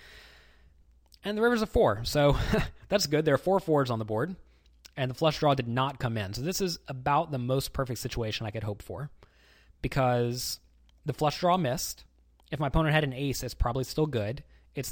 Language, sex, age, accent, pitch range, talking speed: English, male, 20-39, American, 100-155 Hz, 205 wpm